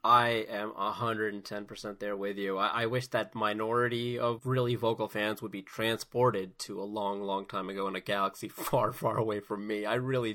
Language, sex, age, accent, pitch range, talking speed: English, male, 20-39, American, 105-145 Hz, 195 wpm